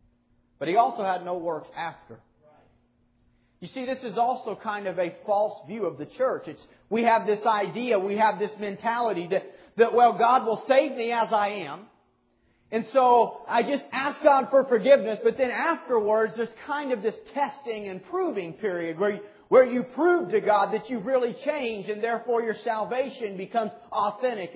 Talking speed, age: 185 wpm, 40-59